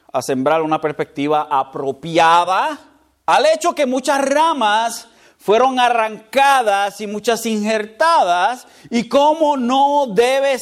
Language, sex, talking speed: Spanish, male, 105 wpm